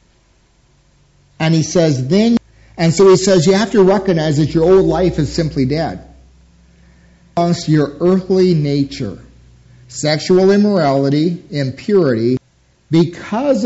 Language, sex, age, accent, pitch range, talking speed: English, male, 50-69, American, 130-185 Hz, 115 wpm